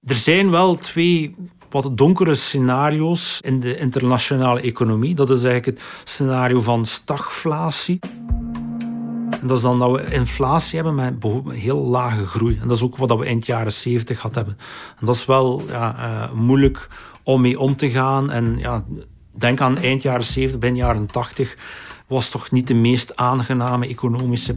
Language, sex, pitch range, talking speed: Dutch, male, 120-145 Hz, 165 wpm